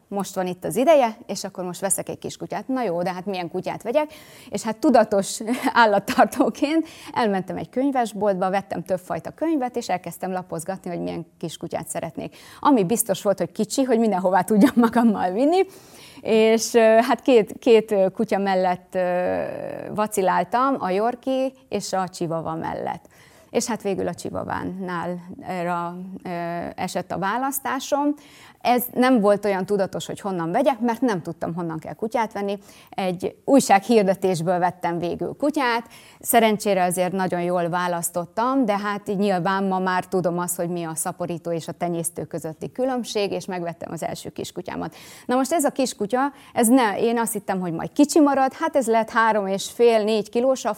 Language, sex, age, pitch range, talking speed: Hungarian, female, 30-49, 180-240 Hz, 160 wpm